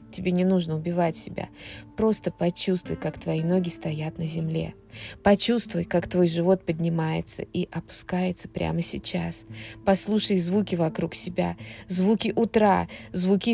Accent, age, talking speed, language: native, 20-39, 130 wpm, Russian